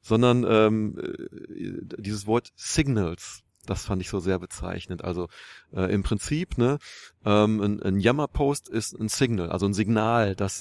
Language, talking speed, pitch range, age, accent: German, 155 wpm, 100-125 Hz, 30-49, German